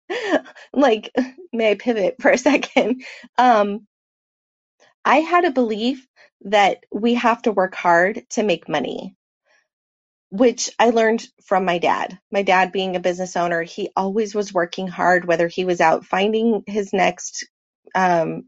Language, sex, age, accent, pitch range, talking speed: English, female, 30-49, American, 185-240 Hz, 150 wpm